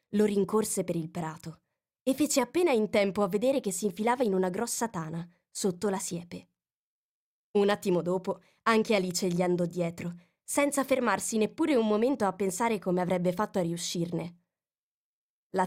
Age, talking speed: 20-39, 165 wpm